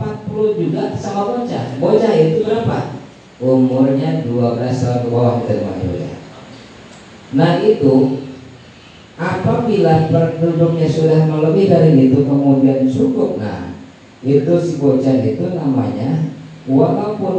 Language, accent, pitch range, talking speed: Indonesian, native, 130-170 Hz, 95 wpm